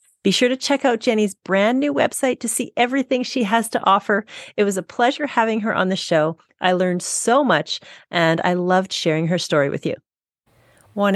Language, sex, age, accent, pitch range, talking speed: English, female, 40-59, American, 175-230 Hz, 205 wpm